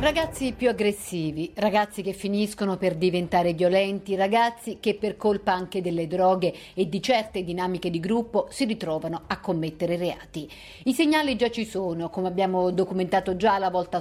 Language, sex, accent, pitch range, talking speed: Italian, female, native, 185-235 Hz, 165 wpm